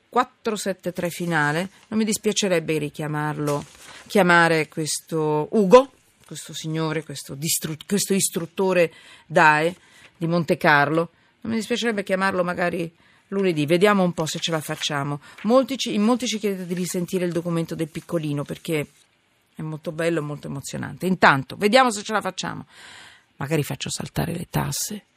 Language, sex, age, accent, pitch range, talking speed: Italian, female, 40-59, native, 140-195 Hz, 145 wpm